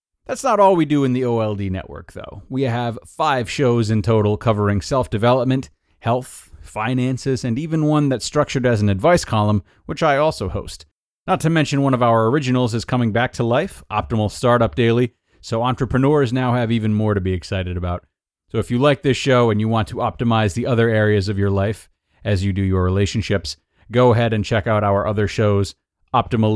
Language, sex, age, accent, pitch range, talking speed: English, male, 30-49, American, 95-120 Hz, 200 wpm